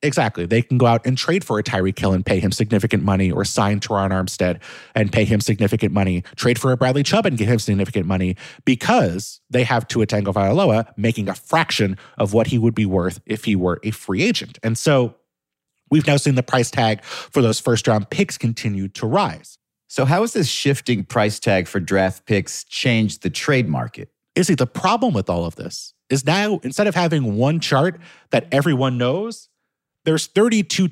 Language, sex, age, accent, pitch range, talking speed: English, male, 30-49, American, 110-160 Hz, 205 wpm